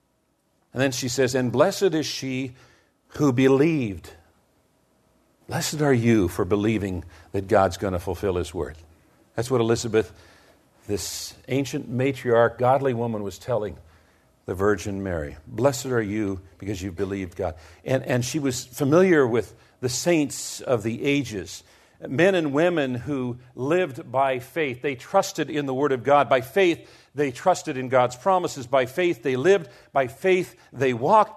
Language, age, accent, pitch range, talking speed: English, 50-69, American, 120-165 Hz, 155 wpm